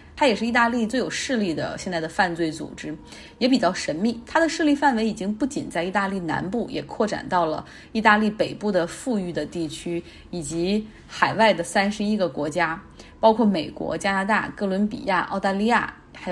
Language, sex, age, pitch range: Chinese, female, 20-39, 180-235 Hz